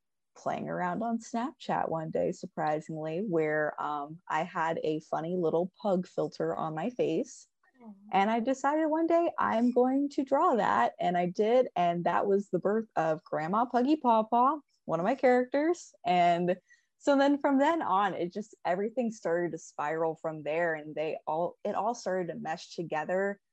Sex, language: female, English